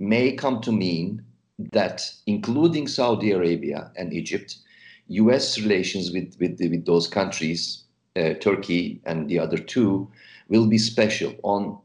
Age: 50-69